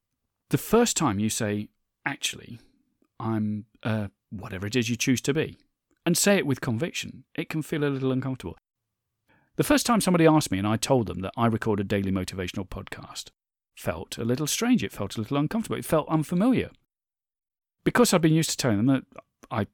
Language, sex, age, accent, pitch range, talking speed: English, male, 40-59, British, 105-170 Hz, 195 wpm